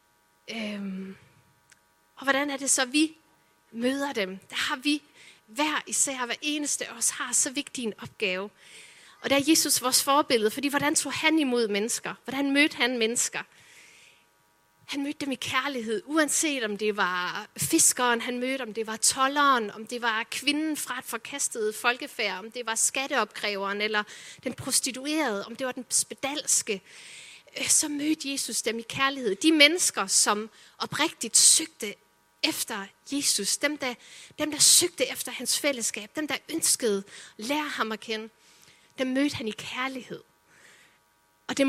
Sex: female